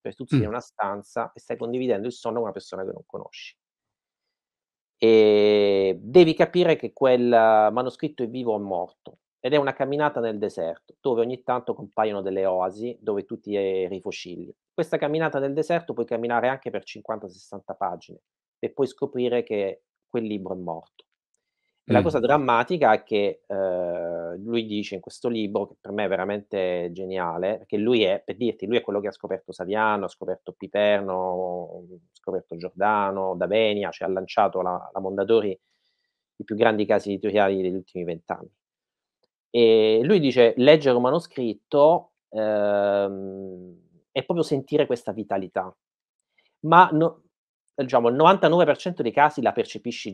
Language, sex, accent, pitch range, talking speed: Italian, male, native, 95-125 Hz, 160 wpm